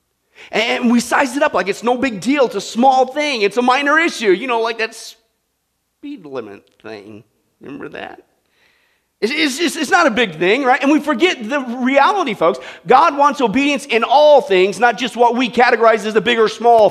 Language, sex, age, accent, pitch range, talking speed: English, male, 40-59, American, 165-260 Hz, 200 wpm